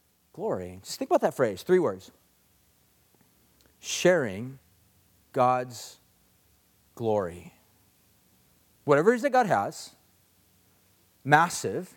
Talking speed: 85 wpm